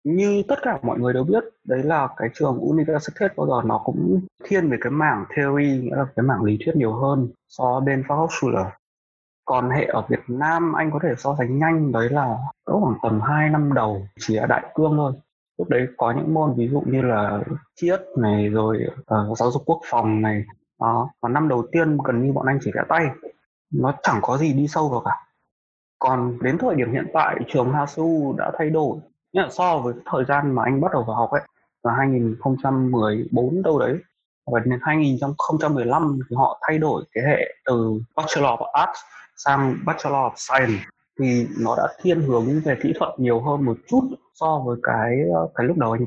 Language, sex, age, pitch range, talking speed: Vietnamese, male, 20-39, 120-155 Hz, 205 wpm